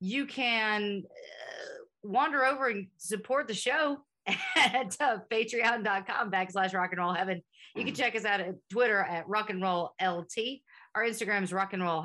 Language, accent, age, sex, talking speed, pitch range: English, American, 40-59, female, 175 wpm, 180-235 Hz